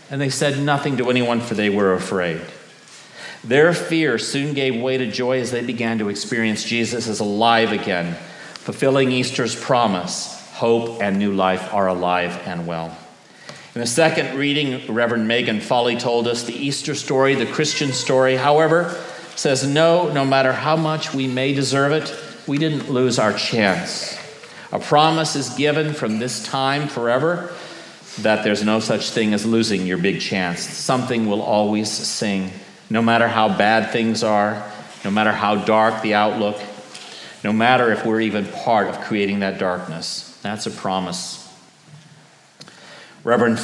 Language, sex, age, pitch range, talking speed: English, male, 50-69, 105-135 Hz, 160 wpm